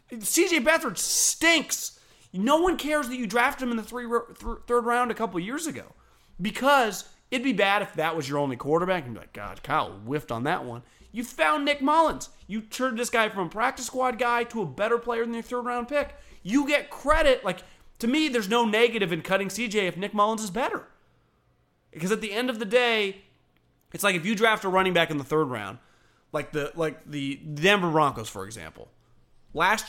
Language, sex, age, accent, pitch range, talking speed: English, male, 30-49, American, 180-260 Hz, 215 wpm